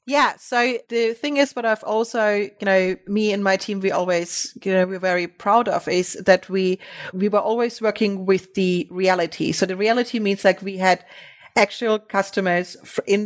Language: English